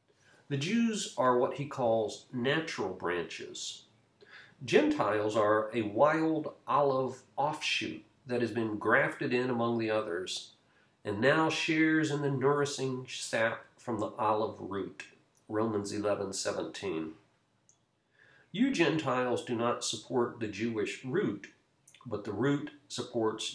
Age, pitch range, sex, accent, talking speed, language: 50-69, 110-145 Hz, male, American, 120 wpm, English